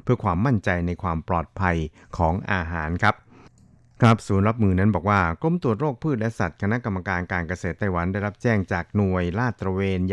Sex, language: male, Thai